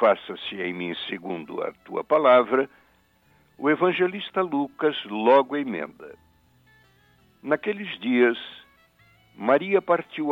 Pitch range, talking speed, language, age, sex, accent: 95-160 Hz, 95 wpm, English, 60-79, male, Brazilian